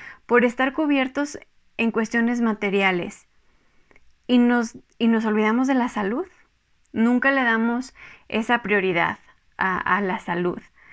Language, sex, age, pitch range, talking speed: Spanish, female, 20-39, 205-255 Hz, 120 wpm